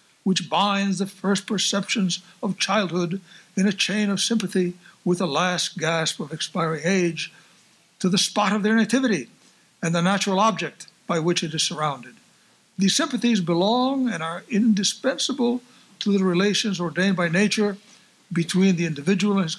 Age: 60-79